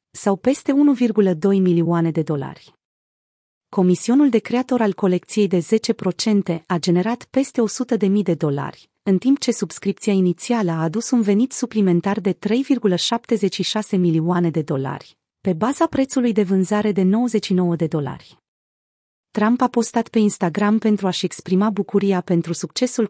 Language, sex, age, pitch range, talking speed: Romanian, female, 30-49, 180-230 Hz, 145 wpm